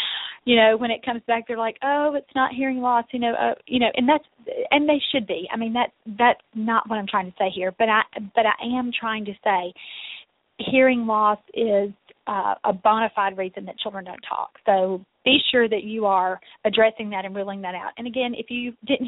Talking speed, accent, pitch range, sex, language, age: 225 wpm, American, 200-250 Hz, female, English, 30-49